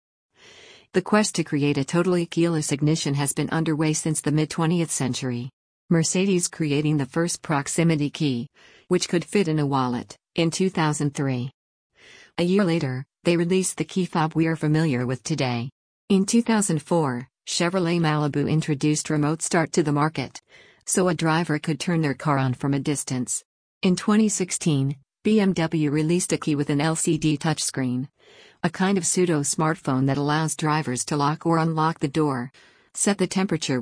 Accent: American